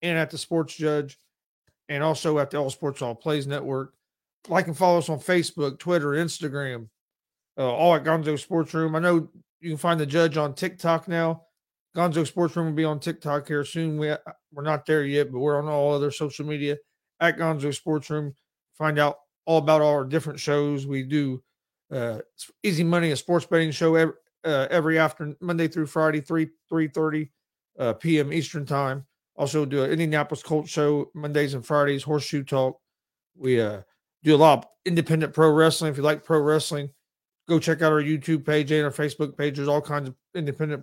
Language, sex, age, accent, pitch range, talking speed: English, male, 40-59, American, 145-165 Hz, 195 wpm